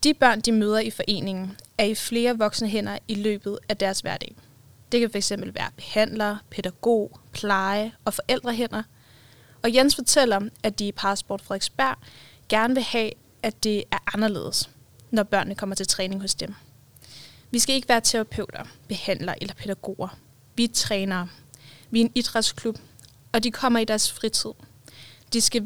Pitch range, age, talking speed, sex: 180-235 Hz, 20-39, 165 wpm, female